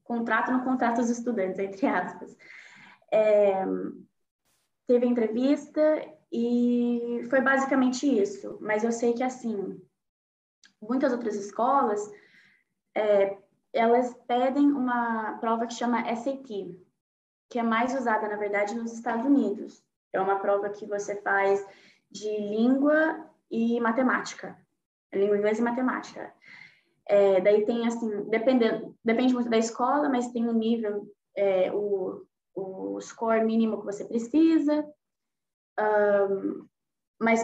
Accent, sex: Brazilian, female